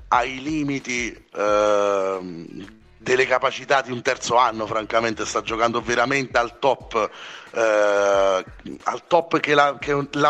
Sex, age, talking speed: male, 30-49, 115 wpm